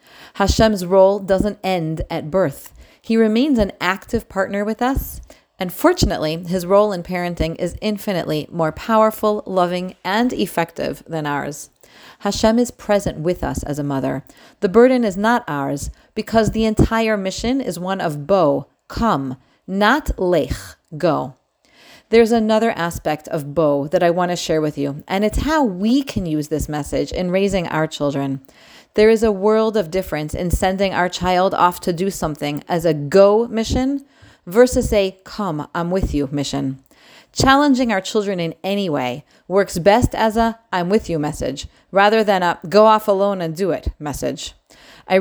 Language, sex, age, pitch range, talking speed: English, female, 40-59, 160-220 Hz, 170 wpm